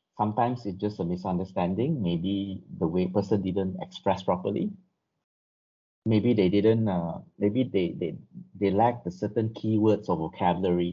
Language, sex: English, male